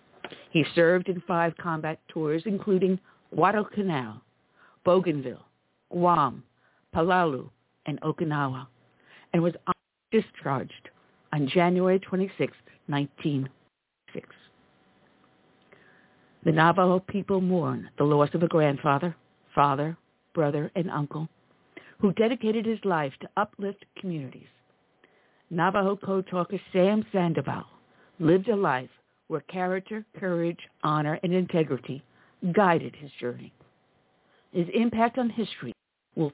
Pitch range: 145-190 Hz